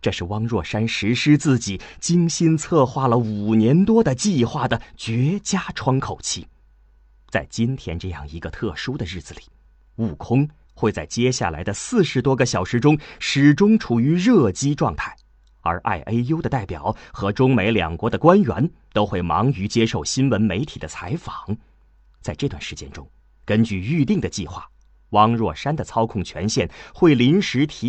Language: Chinese